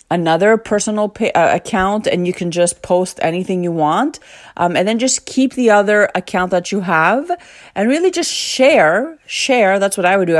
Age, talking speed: 30-49, 195 wpm